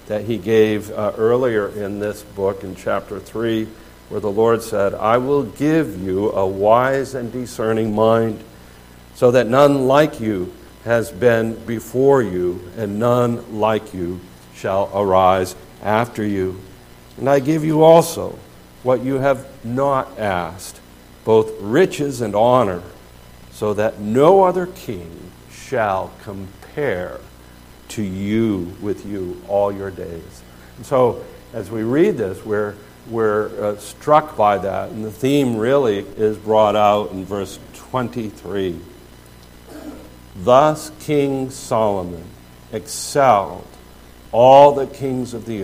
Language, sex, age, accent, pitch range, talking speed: English, male, 60-79, American, 90-115 Hz, 130 wpm